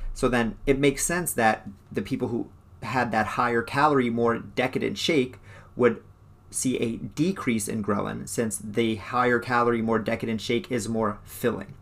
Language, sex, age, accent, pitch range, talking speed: English, male, 30-49, American, 105-130 Hz, 150 wpm